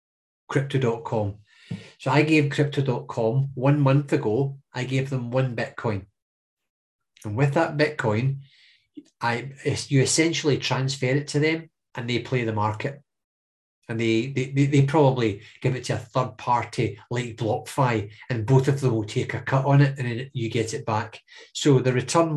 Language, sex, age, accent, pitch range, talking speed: English, male, 30-49, British, 115-140 Hz, 165 wpm